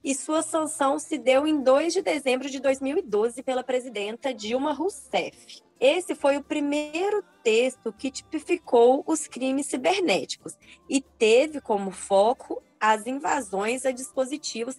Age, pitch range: 20-39, 230-300 Hz